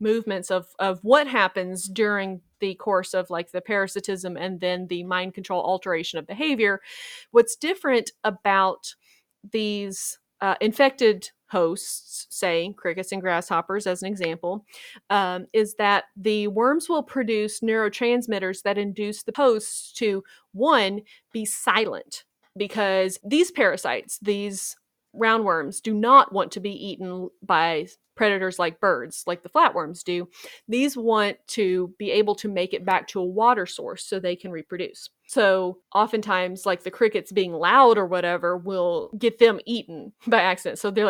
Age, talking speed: 30-49, 150 wpm